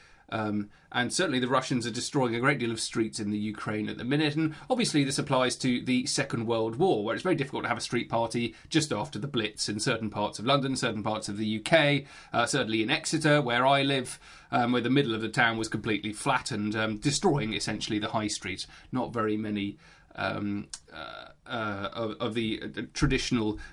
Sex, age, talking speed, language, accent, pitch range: male, 30-49, 215 wpm, English, British, 110-150 Hz